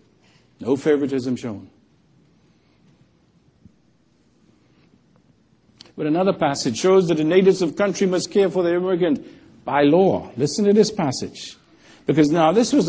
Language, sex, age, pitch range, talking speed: English, male, 60-79, 155-200 Hz, 125 wpm